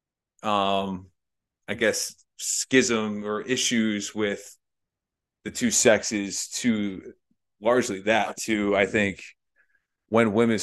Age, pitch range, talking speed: 30-49, 100-120 Hz, 100 wpm